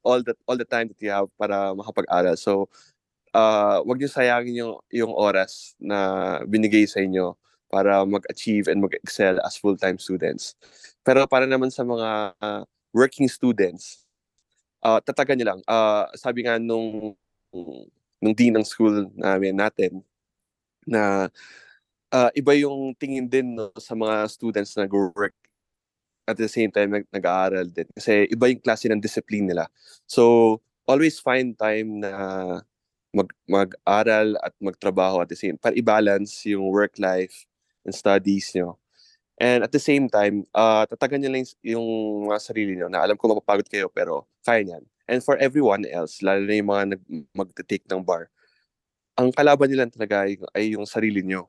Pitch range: 100-120 Hz